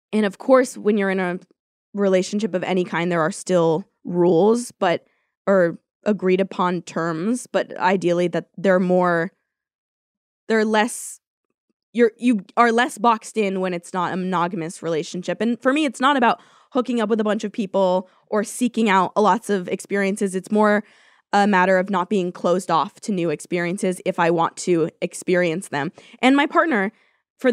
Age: 20-39